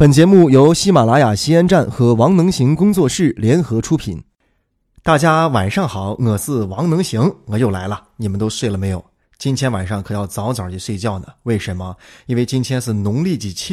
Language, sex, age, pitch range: Chinese, male, 20-39, 105-135 Hz